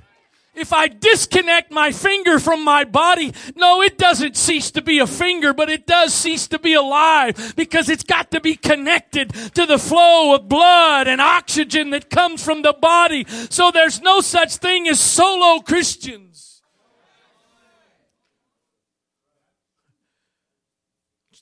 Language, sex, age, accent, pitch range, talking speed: English, male, 40-59, American, 215-320 Hz, 140 wpm